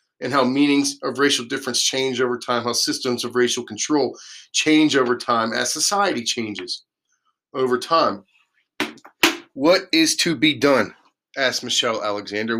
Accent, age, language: American, 40-59, English